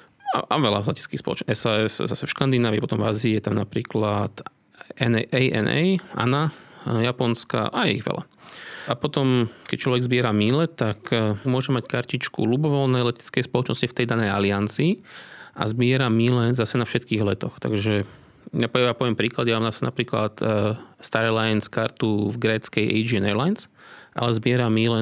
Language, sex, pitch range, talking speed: Slovak, male, 110-125 Hz, 150 wpm